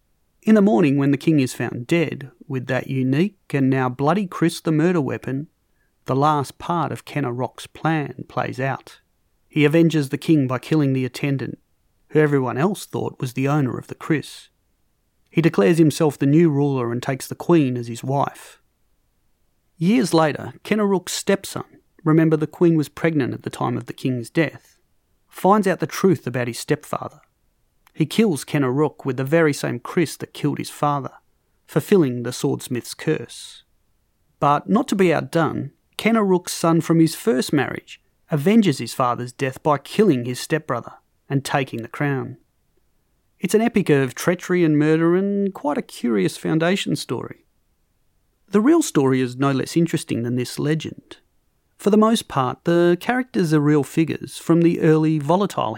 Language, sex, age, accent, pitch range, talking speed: English, male, 30-49, Australian, 130-170 Hz, 170 wpm